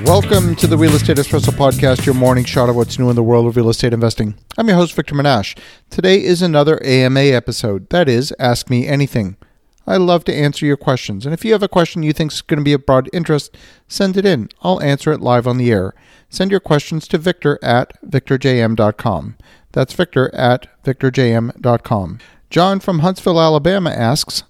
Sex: male